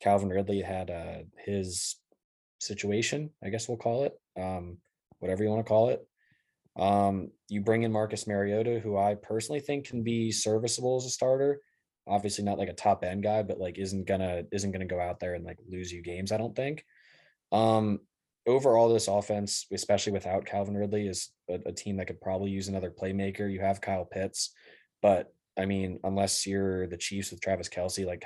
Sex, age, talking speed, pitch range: male, 20-39, 195 wpm, 95-110 Hz